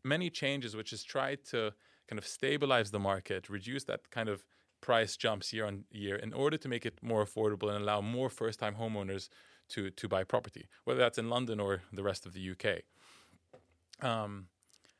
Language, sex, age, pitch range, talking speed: English, male, 20-39, 105-125 Hz, 190 wpm